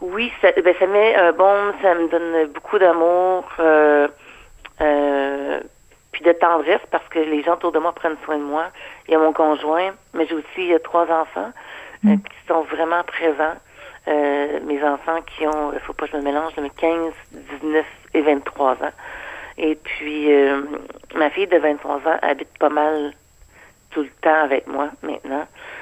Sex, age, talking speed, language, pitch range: female, 50-69, 180 wpm, French, 145-165 Hz